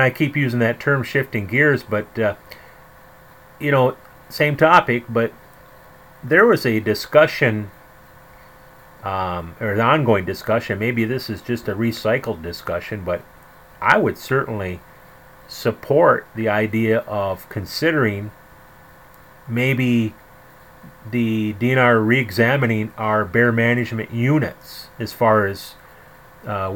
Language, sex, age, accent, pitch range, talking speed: English, male, 30-49, American, 105-125 Hz, 115 wpm